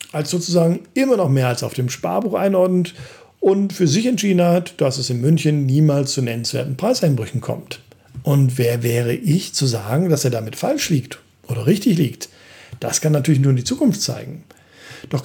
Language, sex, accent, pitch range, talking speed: German, male, German, 125-175 Hz, 185 wpm